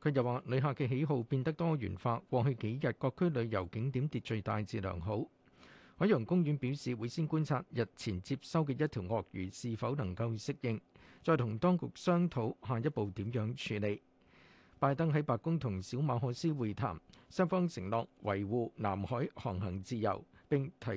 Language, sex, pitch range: Chinese, male, 115-160 Hz